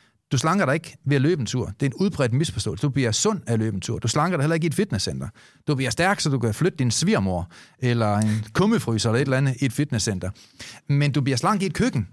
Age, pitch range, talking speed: 30-49, 120-165 Hz, 250 wpm